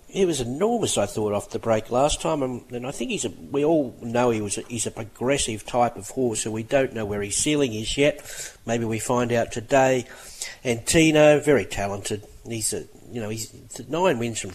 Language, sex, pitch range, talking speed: English, male, 110-140 Hz, 225 wpm